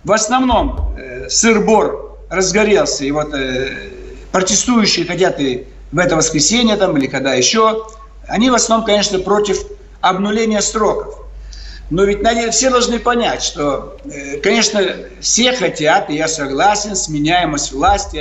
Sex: male